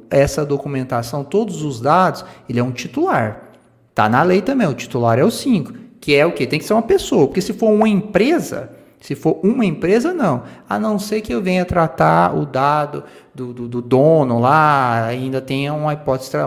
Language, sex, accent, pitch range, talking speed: Portuguese, male, Brazilian, 125-180 Hz, 200 wpm